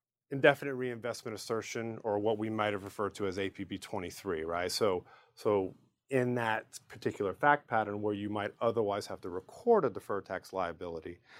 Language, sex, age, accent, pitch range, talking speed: English, male, 30-49, American, 95-115 Hz, 170 wpm